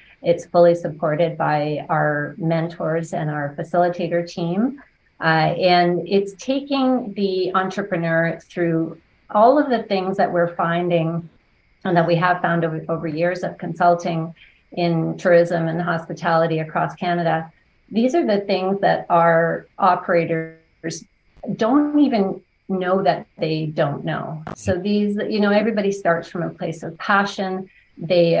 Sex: female